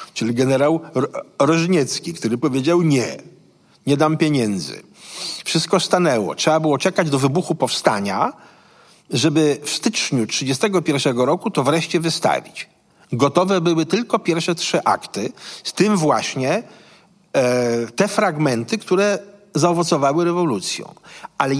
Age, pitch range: 50-69, 150-200 Hz